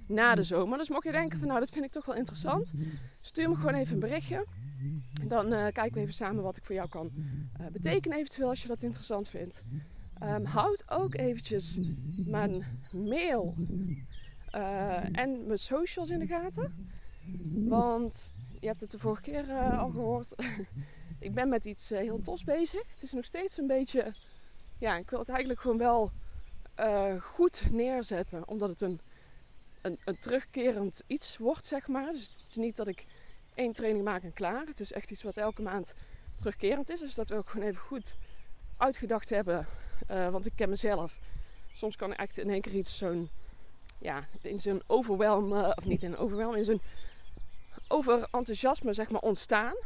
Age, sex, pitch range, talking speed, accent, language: 20-39, female, 185-245 Hz, 185 wpm, Dutch, Dutch